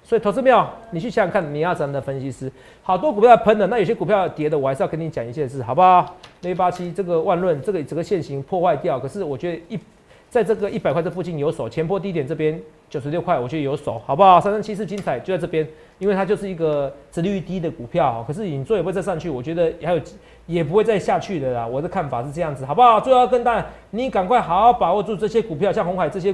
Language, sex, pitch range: Chinese, male, 160-215 Hz